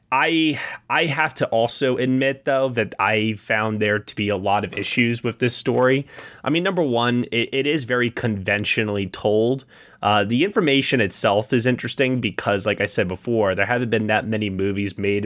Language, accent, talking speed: English, American, 190 wpm